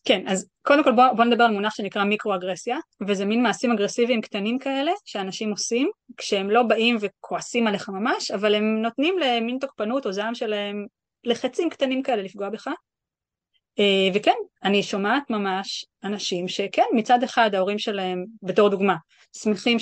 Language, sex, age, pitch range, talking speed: Hebrew, female, 20-39, 200-250 Hz, 155 wpm